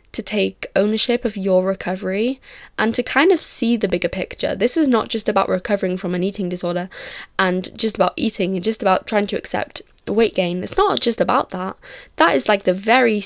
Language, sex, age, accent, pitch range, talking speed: English, female, 10-29, British, 190-240 Hz, 210 wpm